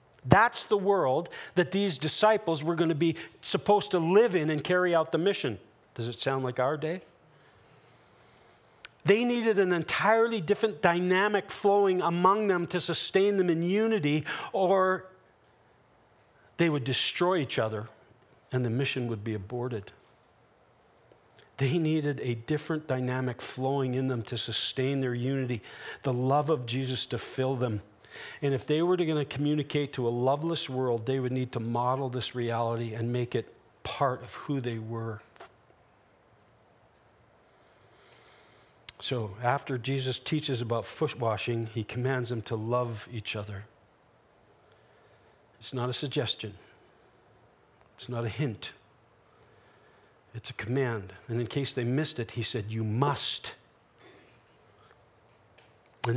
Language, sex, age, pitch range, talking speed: English, male, 40-59, 120-165 Hz, 140 wpm